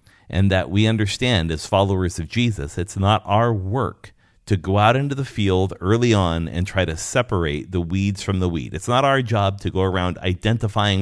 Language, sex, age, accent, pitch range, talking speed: English, male, 40-59, American, 90-115 Hz, 200 wpm